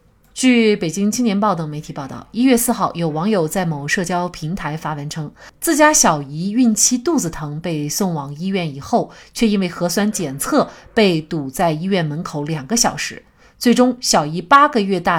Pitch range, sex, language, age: 165-245 Hz, female, Chinese, 30-49